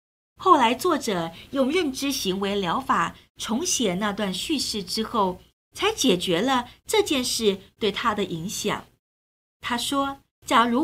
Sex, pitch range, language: female, 190-275 Hz, Chinese